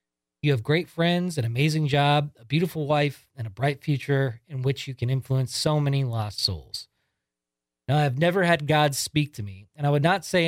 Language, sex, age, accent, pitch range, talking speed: English, male, 30-49, American, 110-145 Hz, 210 wpm